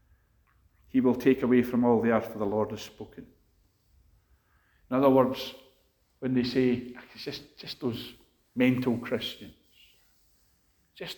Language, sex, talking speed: English, male, 135 wpm